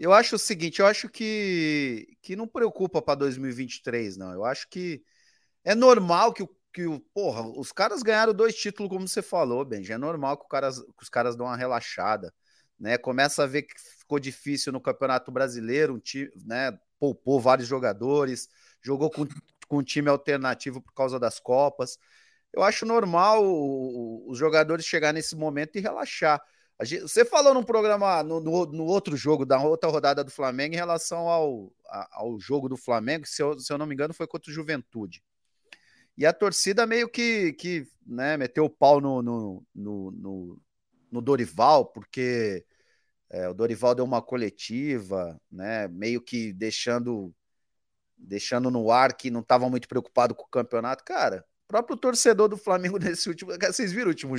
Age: 30-49